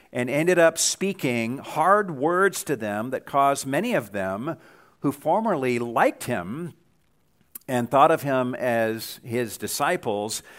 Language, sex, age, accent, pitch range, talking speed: English, male, 50-69, American, 115-155 Hz, 135 wpm